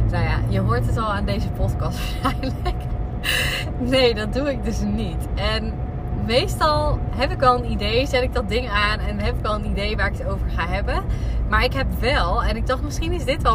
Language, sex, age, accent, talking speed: Dutch, female, 20-39, Dutch, 225 wpm